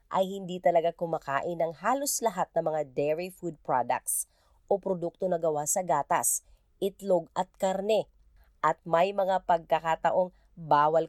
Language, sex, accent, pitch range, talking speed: Filipino, female, native, 155-195 Hz, 140 wpm